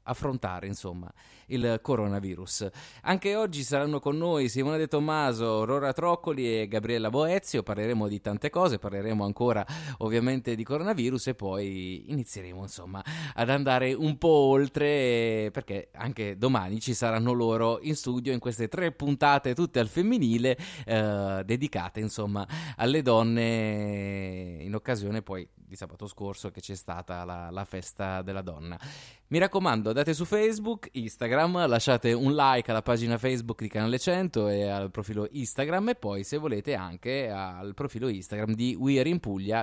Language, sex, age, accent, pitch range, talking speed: Italian, male, 20-39, native, 105-150 Hz, 155 wpm